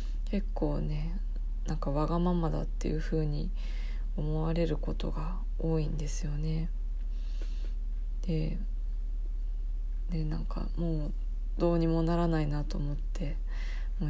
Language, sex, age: Japanese, female, 20-39